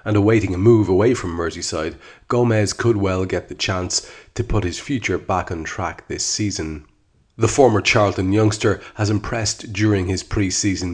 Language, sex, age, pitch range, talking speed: English, male, 30-49, 95-110 Hz, 170 wpm